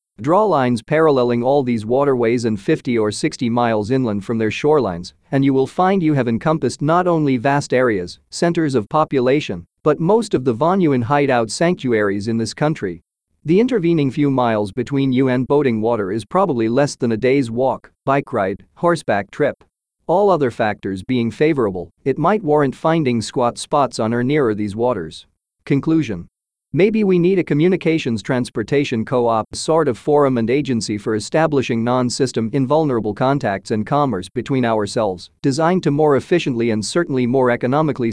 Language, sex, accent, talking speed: English, male, American, 165 wpm